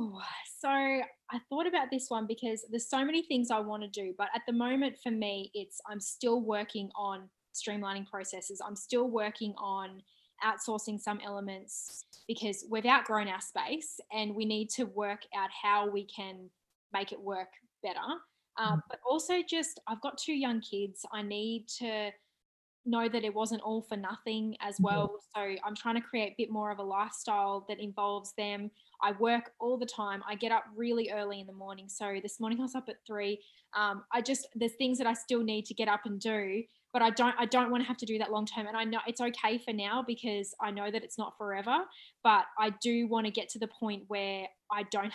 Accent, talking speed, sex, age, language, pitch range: Australian, 215 wpm, female, 10-29, English, 205-235 Hz